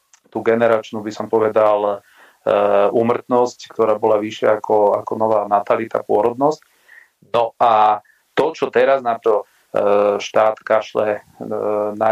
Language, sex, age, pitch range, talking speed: Slovak, male, 40-59, 105-120 Hz, 120 wpm